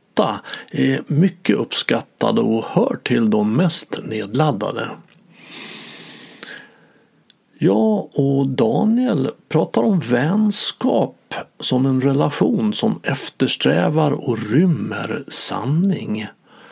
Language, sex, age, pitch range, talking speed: English, male, 60-79, 125-205 Hz, 85 wpm